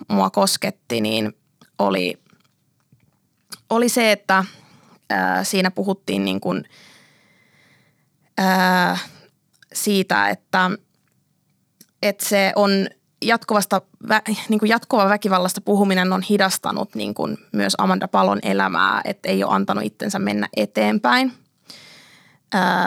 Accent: native